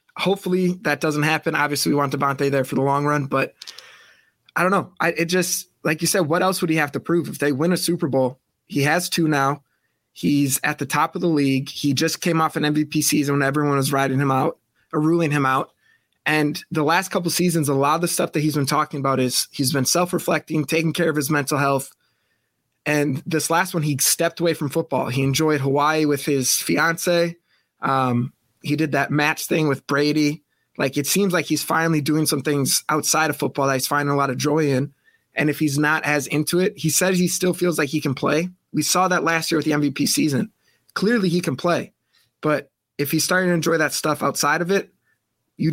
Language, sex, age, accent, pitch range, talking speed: English, male, 20-39, American, 140-165 Hz, 230 wpm